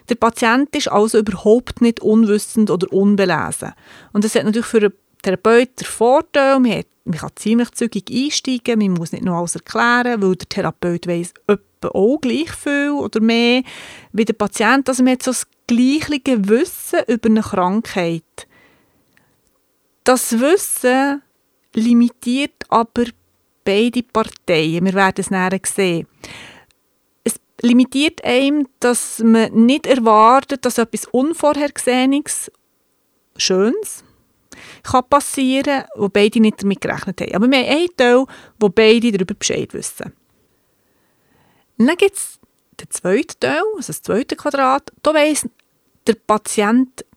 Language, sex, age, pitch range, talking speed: German, female, 30-49, 210-270 Hz, 135 wpm